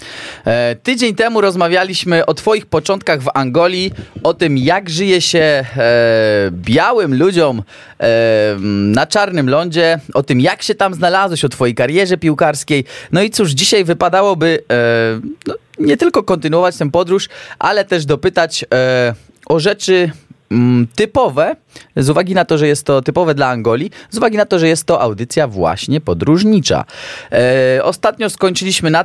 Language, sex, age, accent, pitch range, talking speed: Polish, male, 20-39, native, 125-185 Hz, 150 wpm